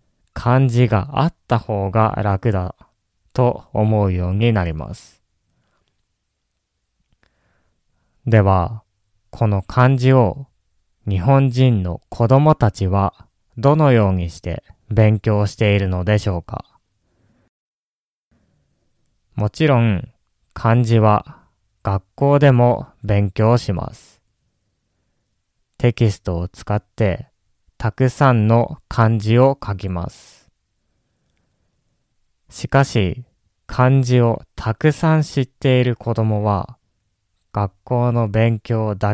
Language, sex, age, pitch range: Japanese, male, 20-39, 100-125 Hz